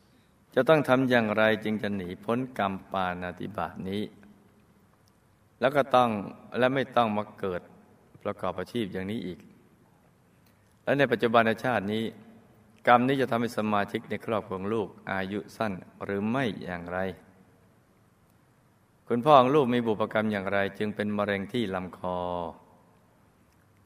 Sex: male